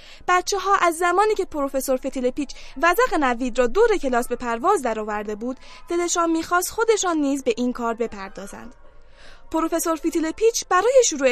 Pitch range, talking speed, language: 250-355 Hz, 165 wpm, Persian